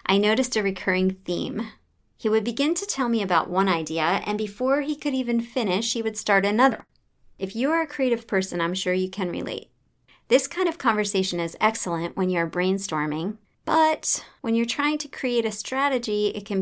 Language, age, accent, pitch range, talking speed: English, 40-59, American, 185-230 Hz, 195 wpm